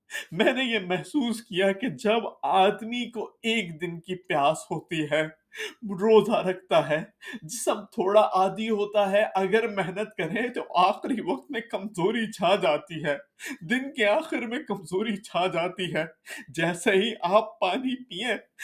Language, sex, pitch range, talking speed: Urdu, male, 195-260 Hz, 155 wpm